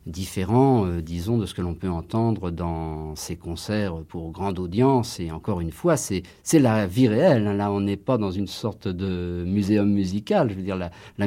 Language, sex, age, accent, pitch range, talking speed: French, male, 50-69, French, 90-130 Hz, 210 wpm